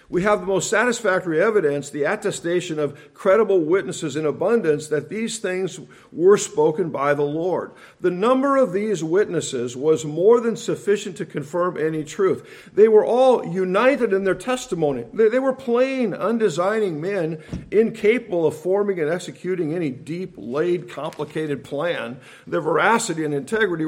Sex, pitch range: male, 155-225 Hz